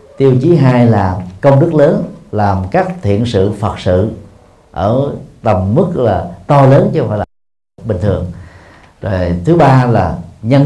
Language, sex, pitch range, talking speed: Vietnamese, male, 100-135 Hz, 170 wpm